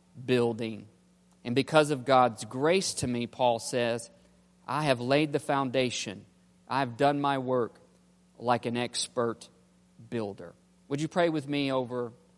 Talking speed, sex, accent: 140 wpm, male, American